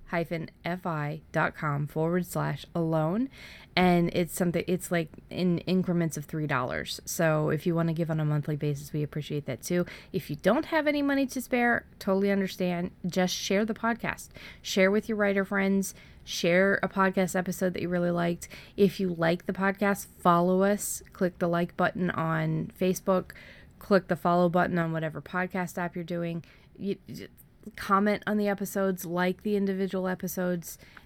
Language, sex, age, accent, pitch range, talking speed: English, female, 20-39, American, 165-195 Hz, 170 wpm